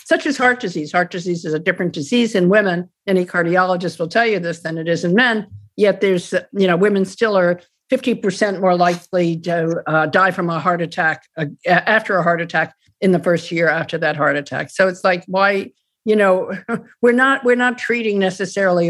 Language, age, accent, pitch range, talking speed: English, 50-69, American, 175-230 Hz, 210 wpm